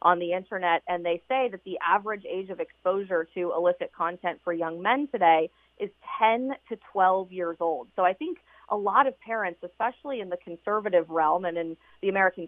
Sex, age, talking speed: female, 30-49, 195 wpm